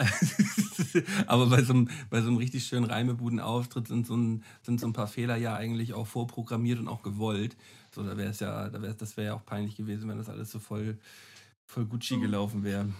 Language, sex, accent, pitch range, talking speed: German, male, German, 110-130 Hz, 205 wpm